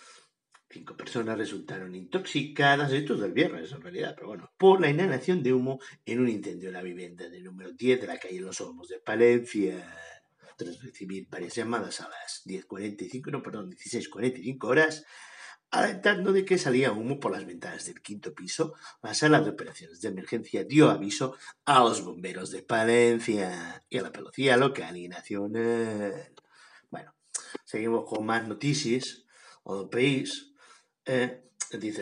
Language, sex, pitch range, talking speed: Spanish, male, 100-130 Hz, 155 wpm